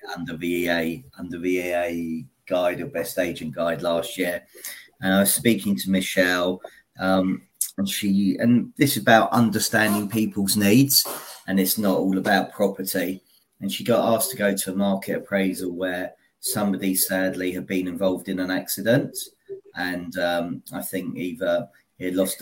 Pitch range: 90-105 Hz